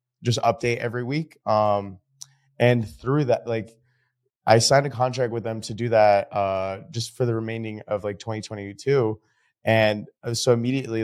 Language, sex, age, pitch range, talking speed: English, male, 20-39, 100-120 Hz, 160 wpm